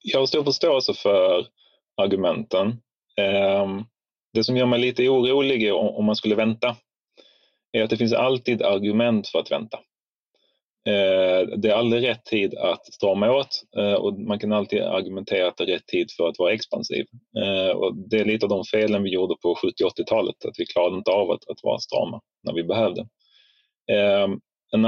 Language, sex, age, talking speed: Swedish, male, 30-49, 165 wpm